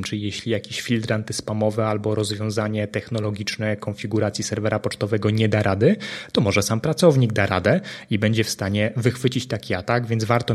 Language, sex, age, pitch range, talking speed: Polish, male, 20-39, 110-125 Hz, 165 wpm